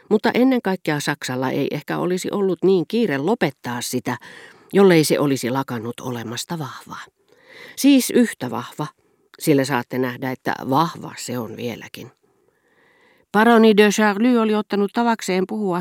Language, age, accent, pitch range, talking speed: Finnish, 40-59, native, 125-200 Hz, 135 wpm